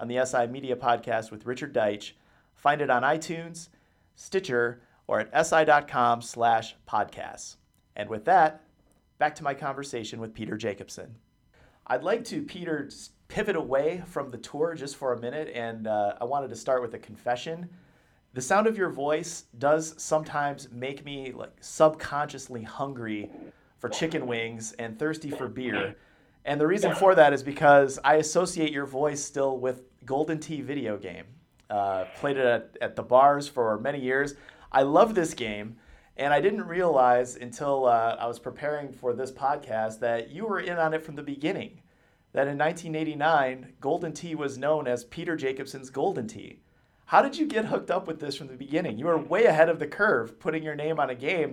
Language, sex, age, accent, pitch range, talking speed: English, male, 40-59, American, 120-155 Hz, 185 wpm